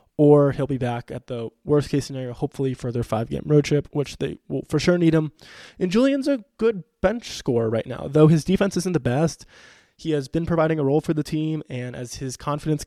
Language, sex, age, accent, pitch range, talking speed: English, male, 20-39, American, 130-160 Hz, 225 wpm